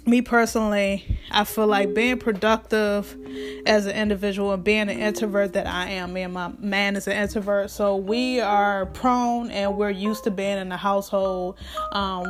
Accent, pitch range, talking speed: American, 195-235 Hz, 180 wpm